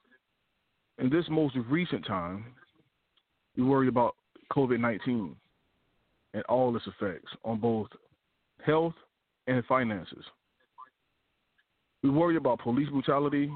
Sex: male